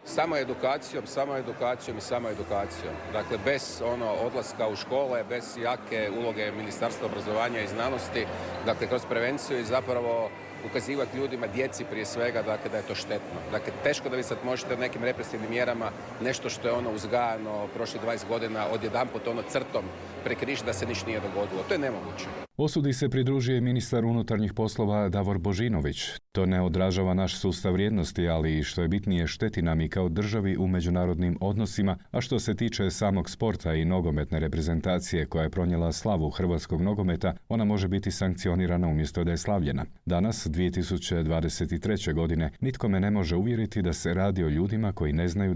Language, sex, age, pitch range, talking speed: Croatian, male, 40-59, 90-115 Hz, 170 wpm